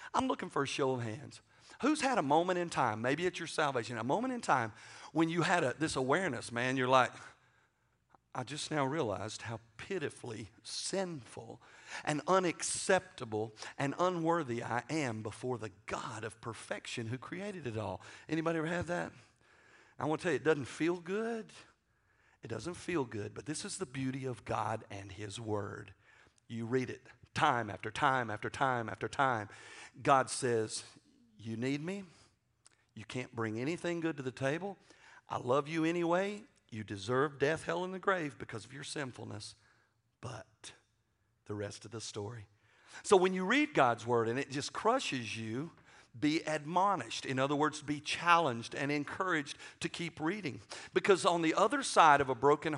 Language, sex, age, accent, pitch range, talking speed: English, male, 50-69, American, 110-165 Hz, 175 wpm